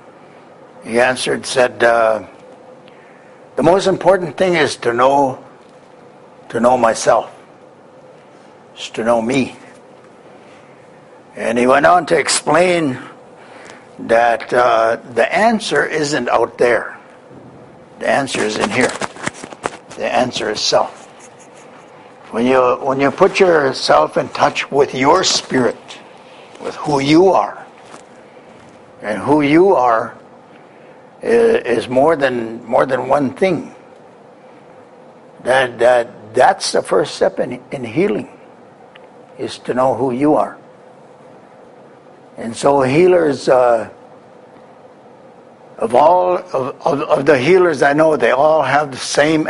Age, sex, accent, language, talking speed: 60-79, male, American, French, 120 wpm